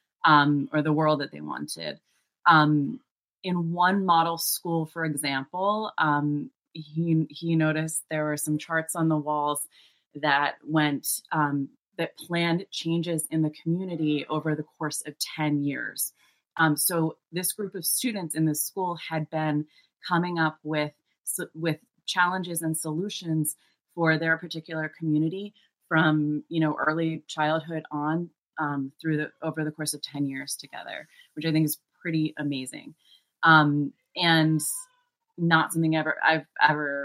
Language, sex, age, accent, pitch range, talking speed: English, female, 30-49, American, 145-165 Hz, 145 wpm